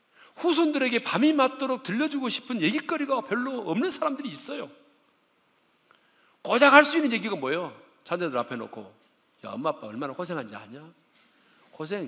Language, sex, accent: Korean, male, native